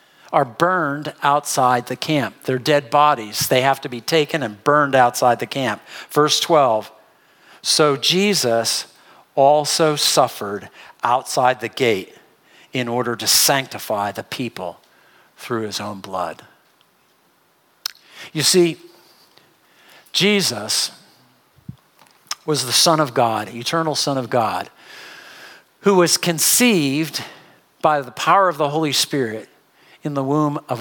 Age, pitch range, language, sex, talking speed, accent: 50-69, 120-165 Hz, English, male, 125 wpm, American